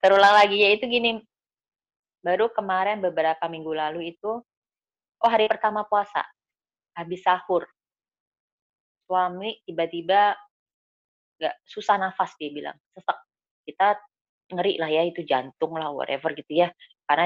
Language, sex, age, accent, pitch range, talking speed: Indonesian, female, 20-39, native, 155-190 Hz, 120 wpm